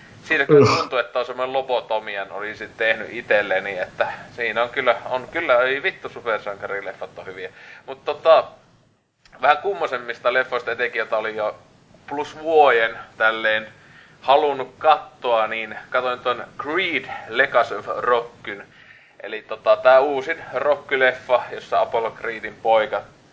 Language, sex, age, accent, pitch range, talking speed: Finnish, male, 30-49, native, 100-125 Hz, 130 wpm